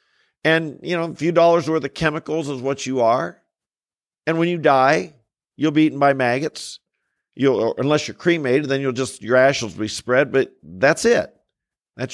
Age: 50-69